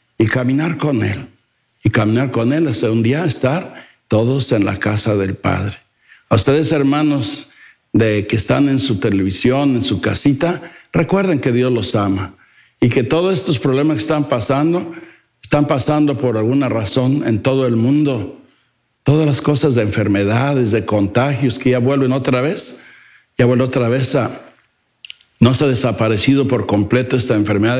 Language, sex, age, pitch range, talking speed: English, male, 60-79, 110-145 Hz, 165 wpm